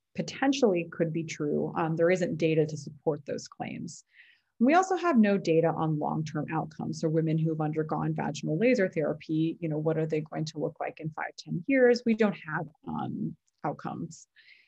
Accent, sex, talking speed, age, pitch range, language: American, female, 190 wpm, 30-49, 155-190 Hz, English